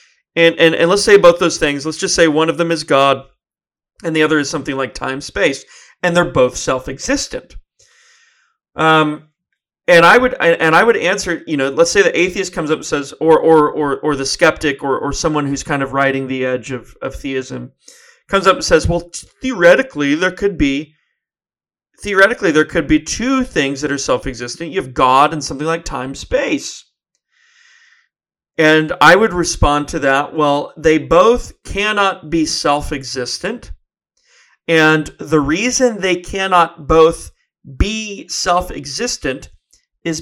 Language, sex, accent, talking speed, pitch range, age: English, male, American, 165 wpm, 150-200 Hz, 30-49